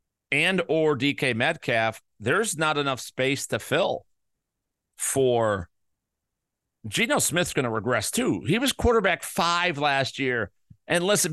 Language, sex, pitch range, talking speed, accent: English, male, 140-210 Hz, 130 wpm, American